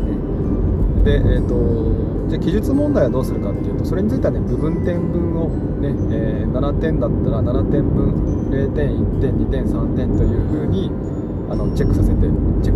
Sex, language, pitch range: male, Japanese, 80-100 Hz